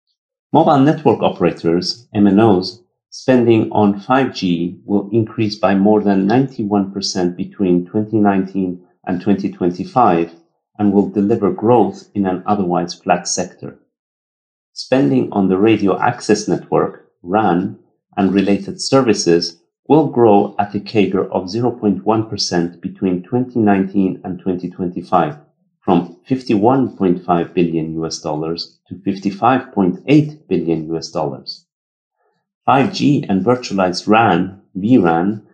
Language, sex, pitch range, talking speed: English, male, 90-115 Hz, 105 wpm